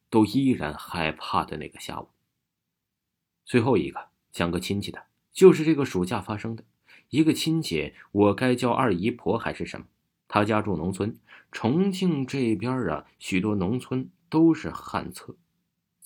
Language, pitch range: Chinese, 100-145 Hz